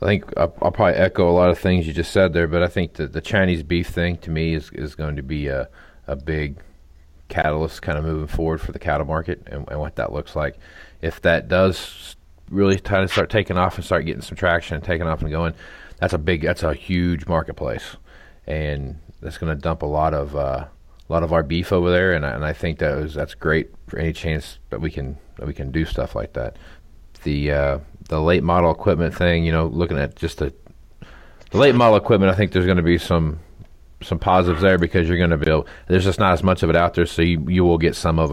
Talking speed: 245 wpm